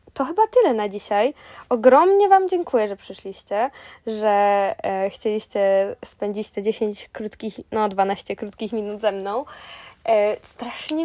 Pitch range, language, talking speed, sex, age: 220-280 Hz, Polish, 135 wpm, female, 10-29